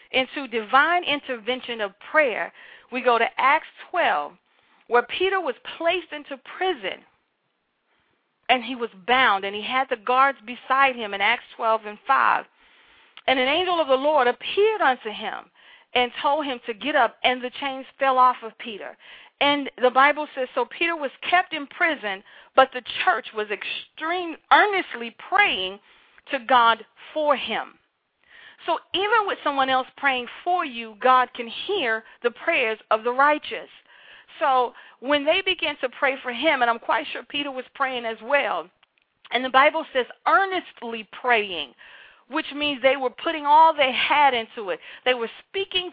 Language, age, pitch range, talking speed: English, 40-59, 240-310 Hz, 165 wpm